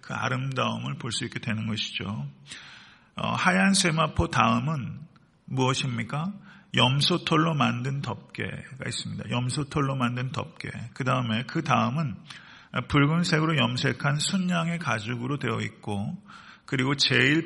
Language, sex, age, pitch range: Korean, male, 40-59, 120-160 Hz